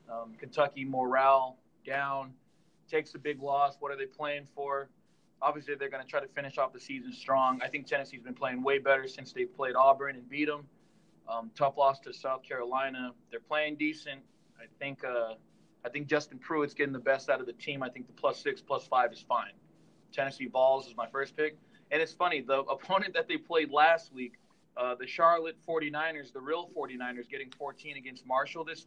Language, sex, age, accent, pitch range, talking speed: English, male, 20-39, American, 130-150 Hz, 205 wpm